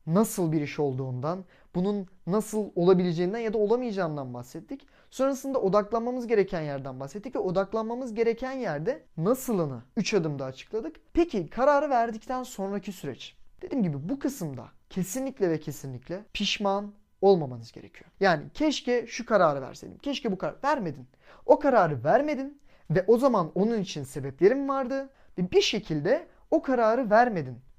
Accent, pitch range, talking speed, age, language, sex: native, 165-240 Hz, 135 wpm, 30-49, Turkish, male